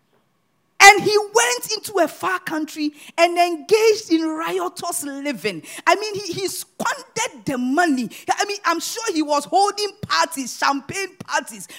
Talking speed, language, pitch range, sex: 150 wpm, English, 265-370 Hz, female